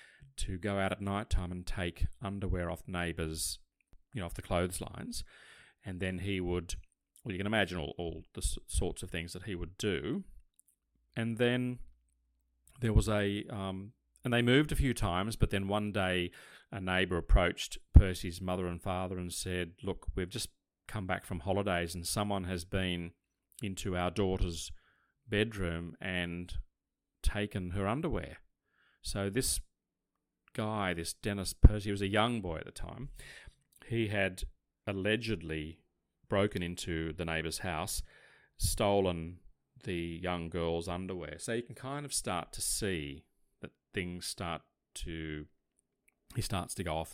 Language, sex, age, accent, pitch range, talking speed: English, male, 30-49, Australian, 85-105 Hz, 155 wpm